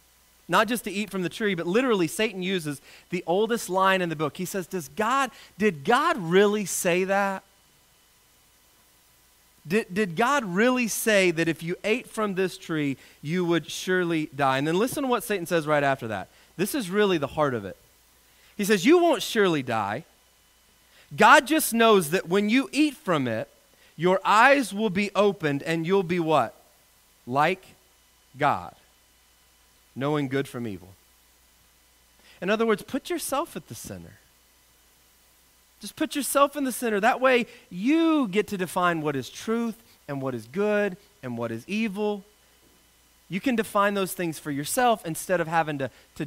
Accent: American